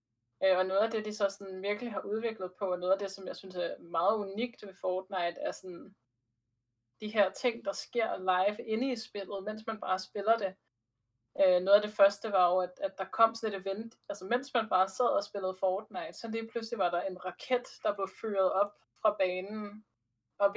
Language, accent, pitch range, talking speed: Danish, native, 180-215 Hz, 215 wpm